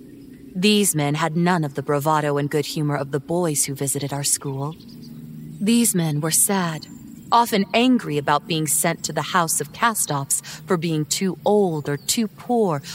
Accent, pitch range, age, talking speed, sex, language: American, 150-210 Hz, 30-49, 175 wpm, female, English